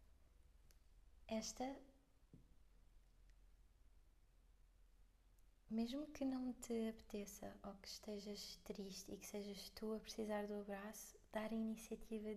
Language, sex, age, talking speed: Portuguese, female, 20-39, 100 wpm